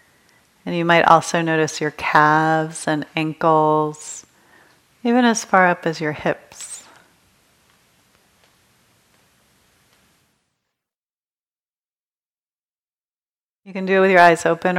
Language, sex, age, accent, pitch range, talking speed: English, female, 40-59, American, 160-185 Hz, 95 wpm